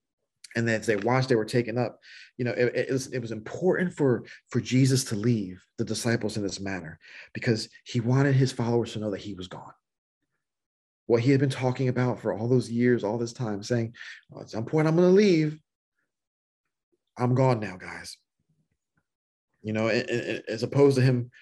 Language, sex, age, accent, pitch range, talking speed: English, male, 30-49, American, 110-130 Hz, 195 wpm